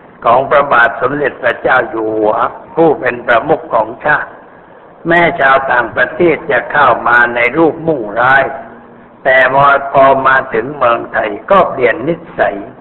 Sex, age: male, 60-79